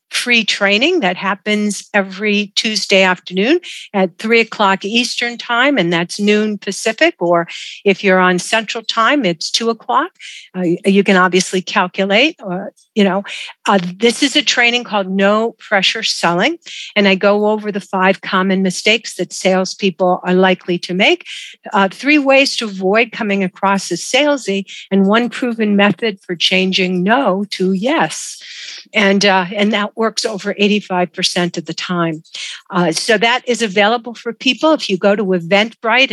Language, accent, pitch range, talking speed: English, American, 185-225 Hz, 160 wpm